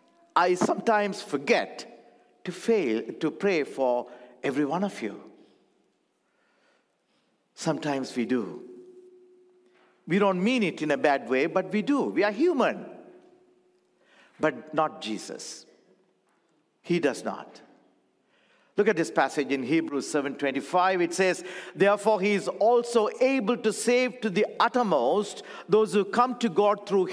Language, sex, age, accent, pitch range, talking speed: English, male, 50-69, Indian, 160-245 Hz, 135 wpm